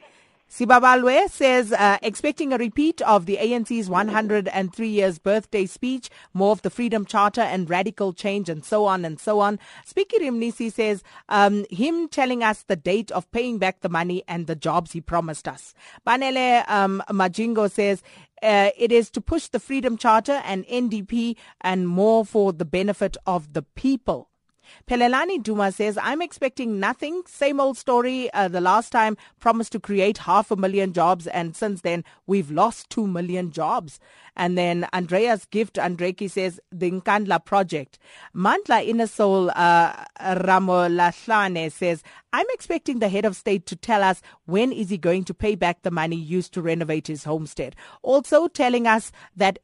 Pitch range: 185-230 Hz